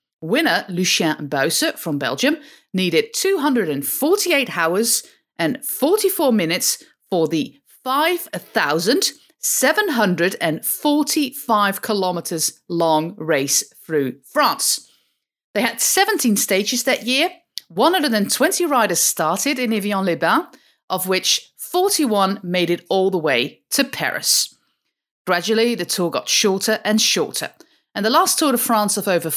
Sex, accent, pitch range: female, British, 170-260 Hz